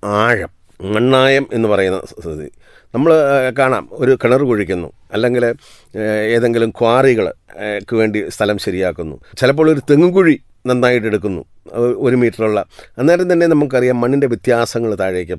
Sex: male